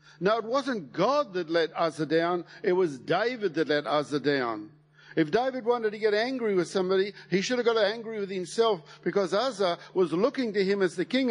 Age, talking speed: 50-69, 205 wpm